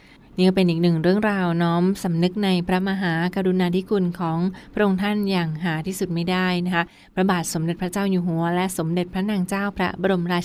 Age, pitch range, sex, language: 20-39, 170-195 Hz, female, Thai